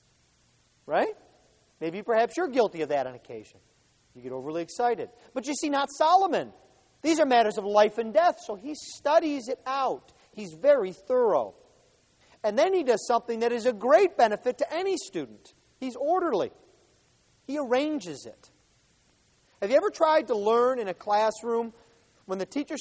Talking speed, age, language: 165 wpm, 40-59, English